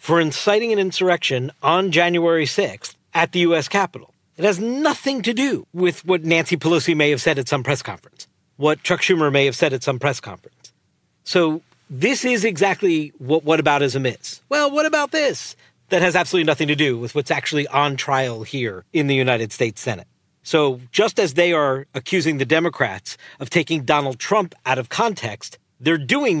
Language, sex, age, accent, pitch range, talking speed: English, male, 40-59, American, 140-205 Hz, 190 wpm